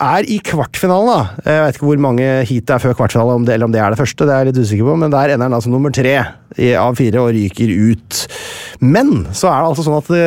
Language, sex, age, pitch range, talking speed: English, male, 30-49, 125-170 Hz, 265 wpm